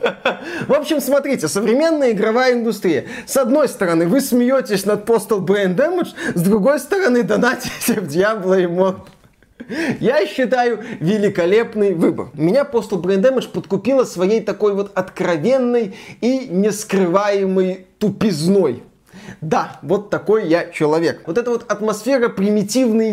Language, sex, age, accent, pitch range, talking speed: Russian, male, 20-39, native, 185-235 Hz, 125 wpm